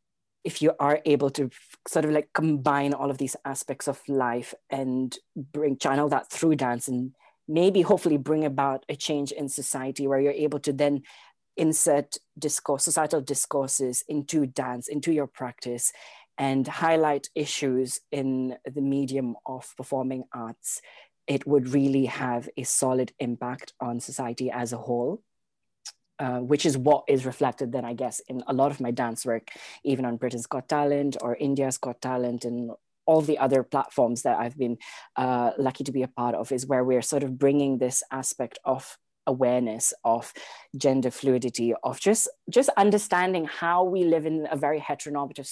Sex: female